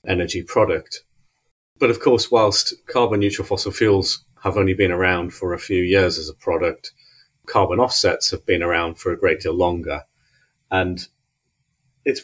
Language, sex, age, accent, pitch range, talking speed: English, male, 30-49, British, 90-125 Hz, 160 wpm